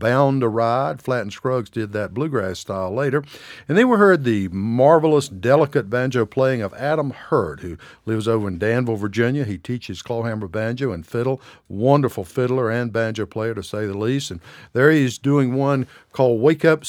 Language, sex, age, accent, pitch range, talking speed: English, male, 60-79, American, 105-140 Hz, 185 wpm